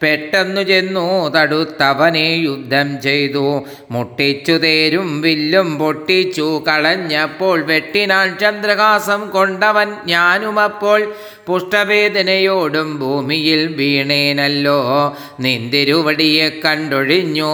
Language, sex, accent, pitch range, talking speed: Malayalam, male, native, 145-190 Hz, 65 wpm